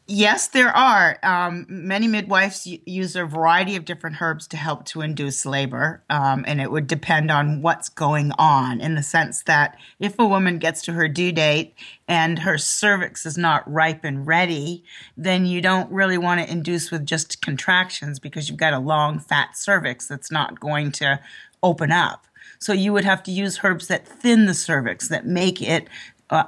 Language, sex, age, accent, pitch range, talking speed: English, female, 30-49, American, 150-185 Hz, 190 wpm